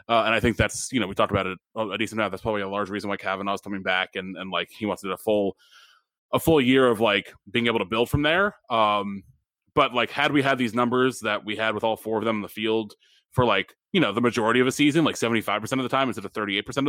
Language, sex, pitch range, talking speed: English, male, 105-130 Hz, 285 wpm